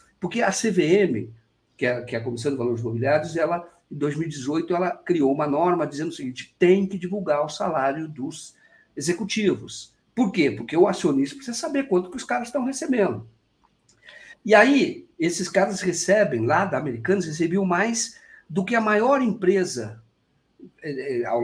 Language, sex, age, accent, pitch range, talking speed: Portuguese, male, 50-69, Brazilian, 130-215 Hz, 155 wpm